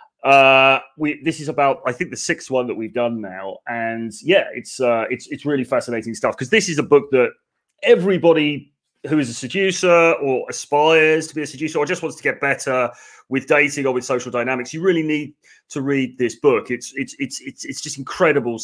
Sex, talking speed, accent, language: male, 215 wpm, British, English